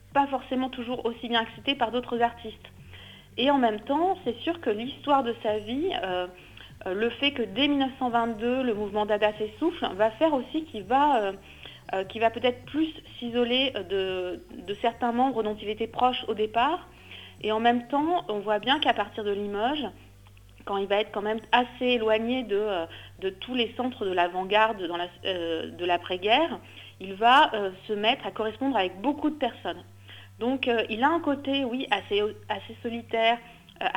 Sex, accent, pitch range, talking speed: female, French, 205-255 Hz, 175 wpm